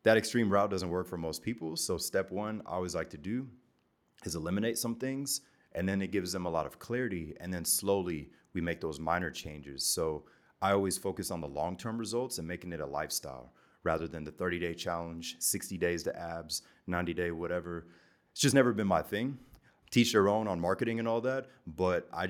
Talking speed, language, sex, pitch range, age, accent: 210 wpm, English, male, 85-105 Hz, 30-49, American